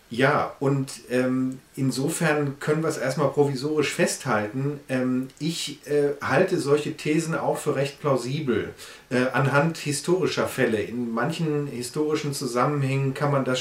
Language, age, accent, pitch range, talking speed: German, 30-49, German, 130-150 Hz, 135 wpm